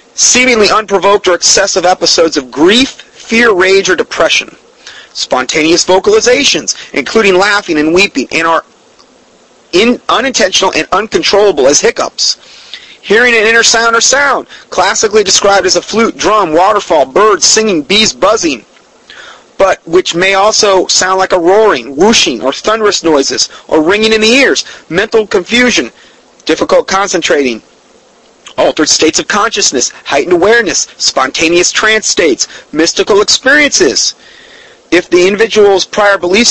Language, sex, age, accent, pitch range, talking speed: English, male, 30-49, American, 175-250 Hz, 130 wpm